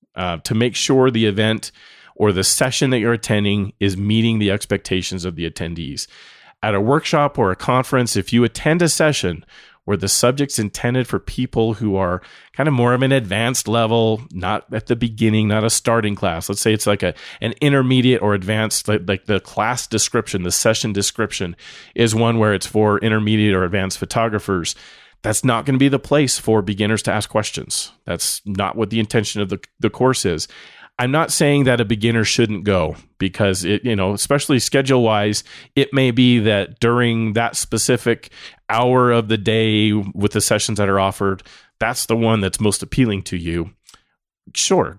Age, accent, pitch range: 30-49, American, 100-125 Hz